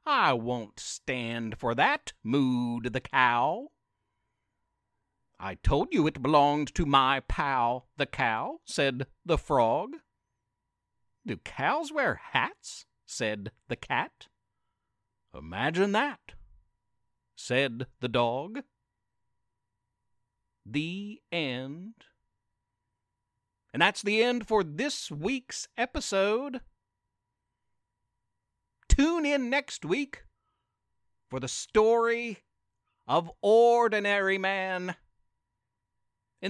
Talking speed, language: 90 wpm, English